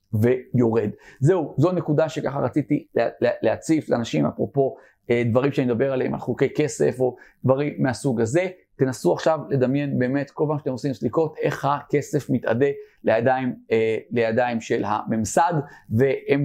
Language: Hebrew